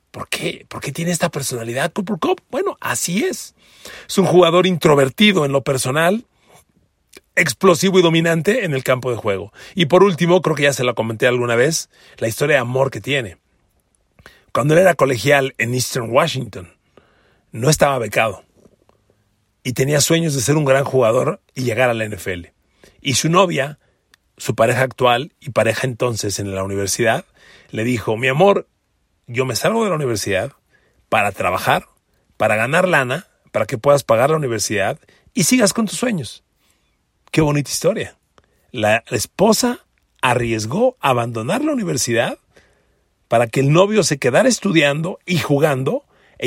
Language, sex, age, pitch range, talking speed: Spanish, male, 40-59, 115-170 Hz, 160 wpm